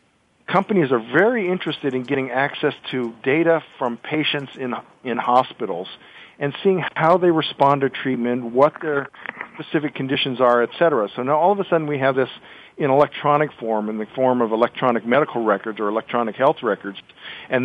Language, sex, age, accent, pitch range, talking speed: English, male, 50-69, American, 120-150 Hz, 175 wpm